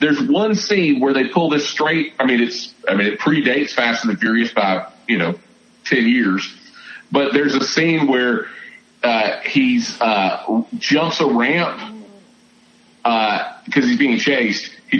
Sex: male